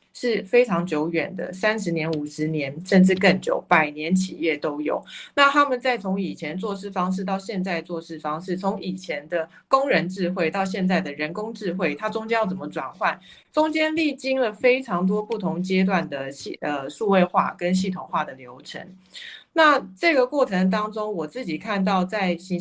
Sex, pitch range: female, 170-210 Hz